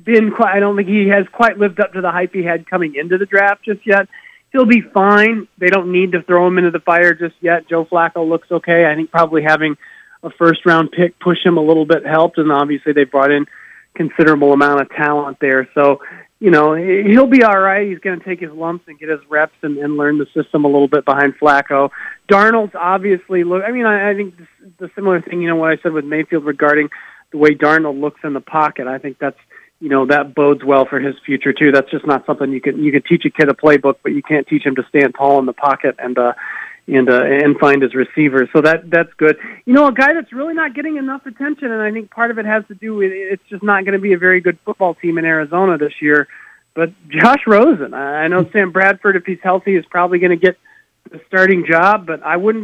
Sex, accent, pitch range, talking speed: male, American, 150-195 Hz, 250 wpm